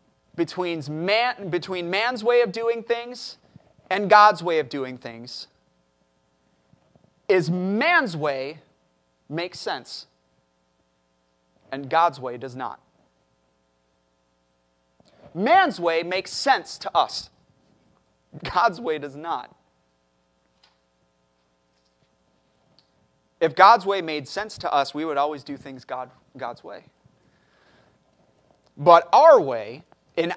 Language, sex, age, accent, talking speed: English, male, 30-49, American, 100 wpm